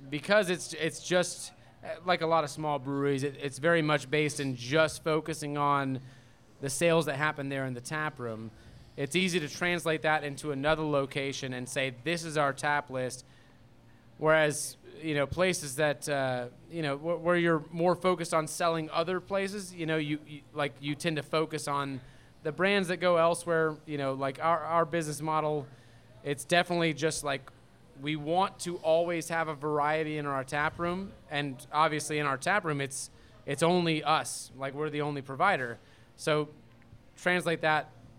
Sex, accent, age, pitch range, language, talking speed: male, American, 30-49, 135-160 Hz, English, 180 wpm